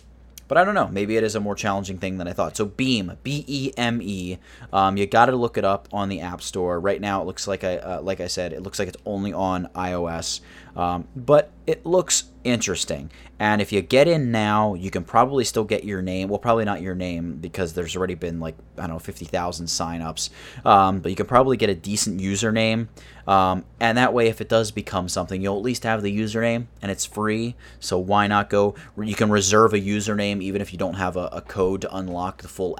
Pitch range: 90-105 Hz